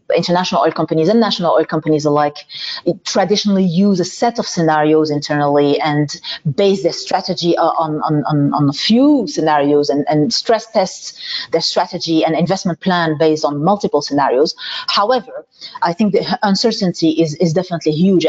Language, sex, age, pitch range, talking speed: English, female, 30-49, 160-205 Hz, 155 wpm